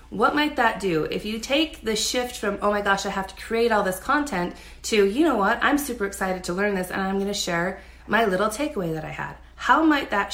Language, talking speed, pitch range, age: English, 255 wpm, 185-225 Hz, 30-49